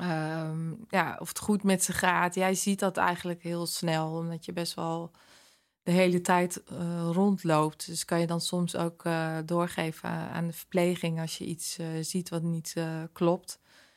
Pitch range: 165-180 Hz